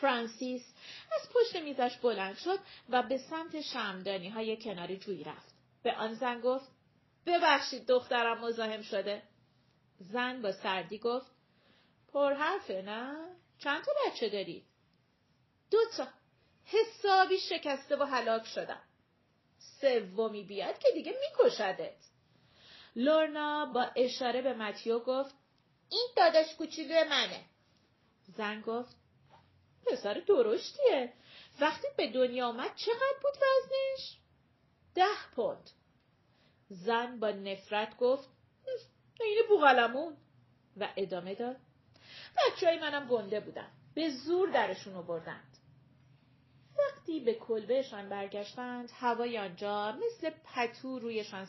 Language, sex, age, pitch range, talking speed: Persian, female, 30-49, 210-305 Hz, 110 wpm